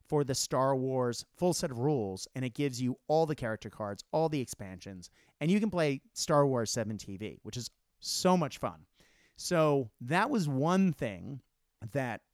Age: 30-49